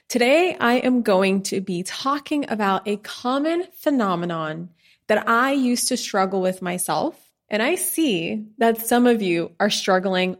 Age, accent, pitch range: 20-39, American, 185-245 Hz